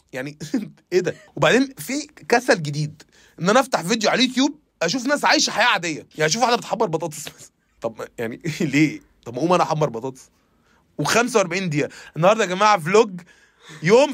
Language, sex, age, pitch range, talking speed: Arabic, male, 20-39, 150-205 Hz, 170 wpm